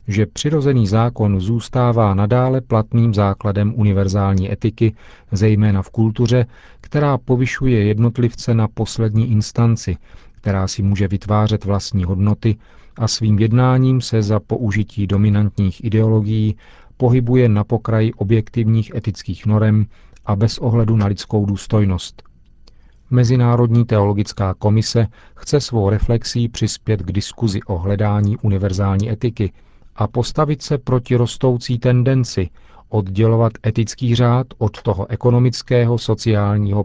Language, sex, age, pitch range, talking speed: Czech, male, 40-59, 100-120 Hz, 115 wpm